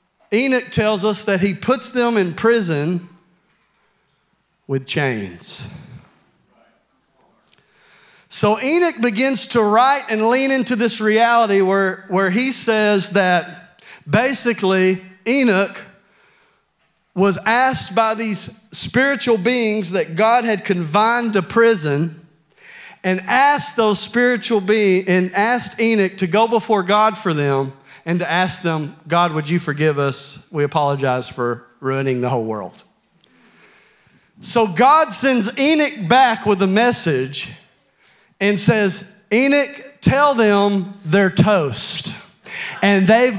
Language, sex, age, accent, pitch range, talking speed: English, male, 40-59, American, 175-230 Hz, 120 wpm